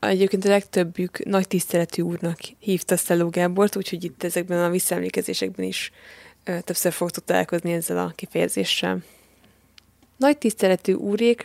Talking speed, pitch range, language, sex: 125 wpm, 175-210 Hz, Hungarian, female